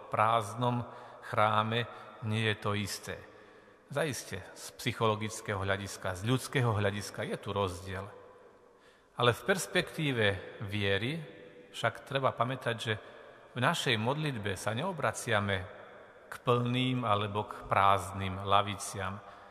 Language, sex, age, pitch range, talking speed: Slovak, male, 40-59, 105-130 Hz, 110 wpm